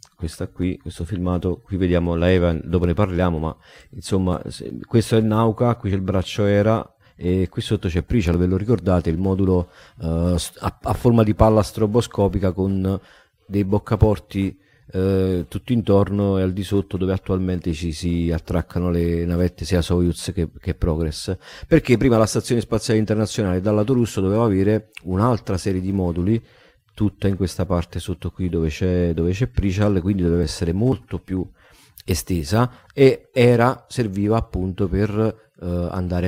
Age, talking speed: 40-59, 165 wpm